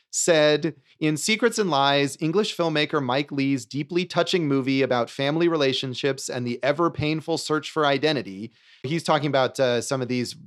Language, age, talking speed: English, 30-49, 160 wpm